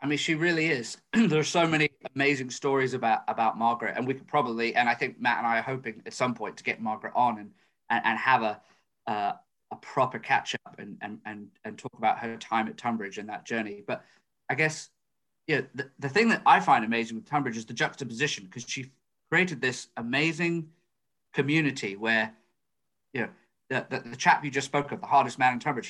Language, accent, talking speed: English, British, 220 wpm